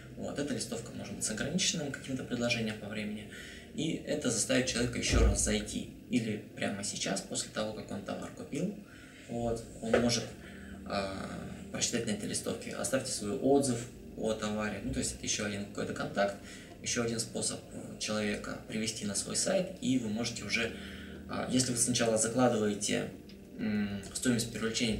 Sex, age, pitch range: male, 20-39, 105-125 Hz